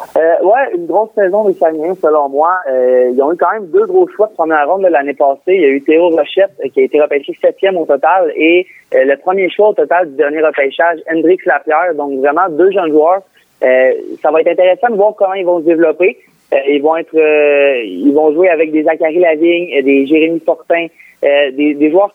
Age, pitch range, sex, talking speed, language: 30-49, 145-185 Hz, male, 235 wpm, French